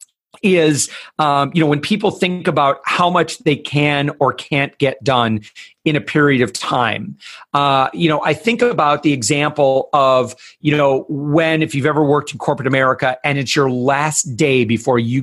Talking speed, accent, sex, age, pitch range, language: 185 wpm, American, male, 40-59, 145-205 Hz, English